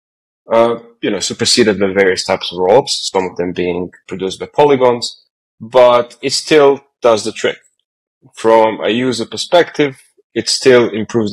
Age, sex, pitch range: 20-39, male, 95-115 Hz